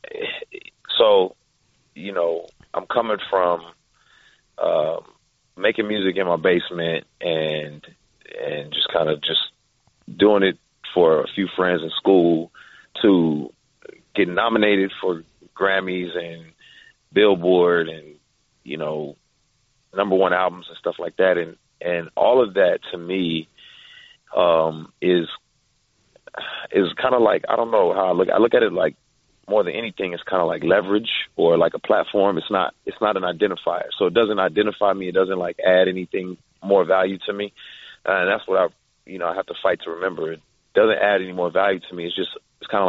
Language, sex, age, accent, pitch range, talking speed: English, male, 30-49, American, 85-95 Hz, 175 wpm